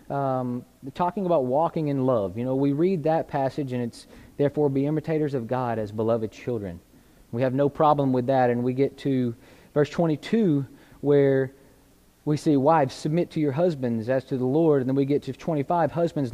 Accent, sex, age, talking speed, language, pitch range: American, male, 30-49, 195 wpm, English, 130-155 Hz